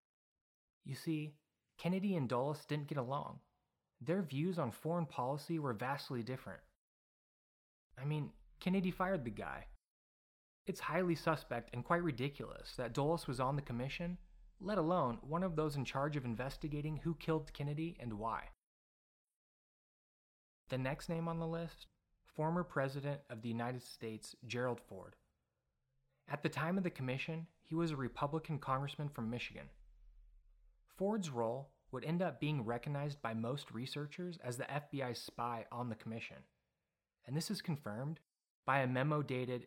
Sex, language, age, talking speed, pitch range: male, English, 30-49, 150 wpm, 120-160 Hz